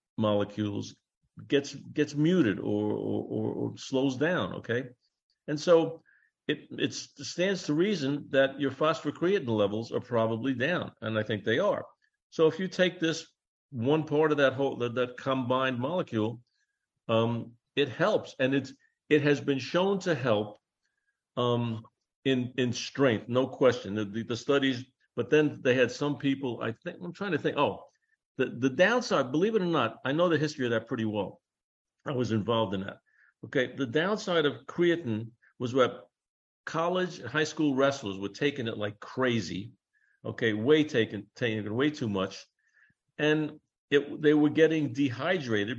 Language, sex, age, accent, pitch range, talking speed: English, male, 50-69, American, 110-150 Hz, 165 wpm